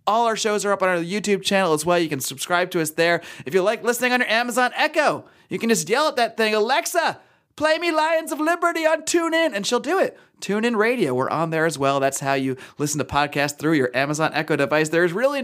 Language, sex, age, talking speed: English, male, 30-49, 250 wpm